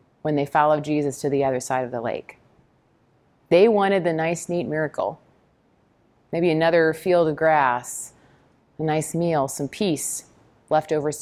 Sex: female